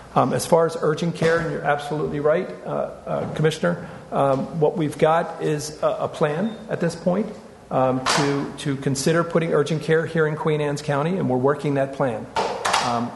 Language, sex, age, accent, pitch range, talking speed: English, male, 50-69, American, 130-160 Hz, 190 wpm